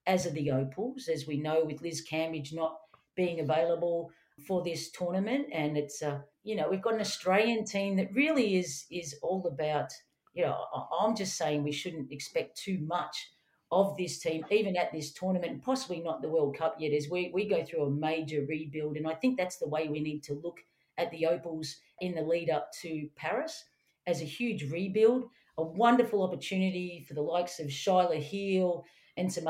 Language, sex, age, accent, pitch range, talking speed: English, female, 50-69, Australian, 160-195 Hz, 195 wpm